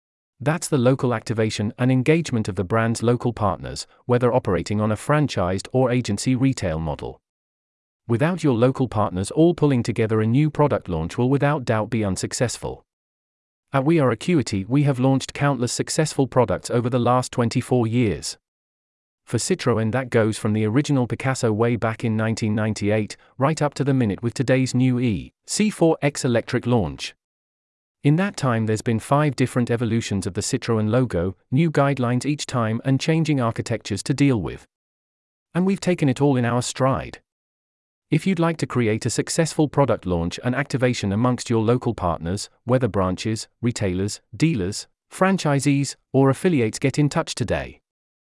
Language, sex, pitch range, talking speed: English, male, 100-140 Hz, 160 wpm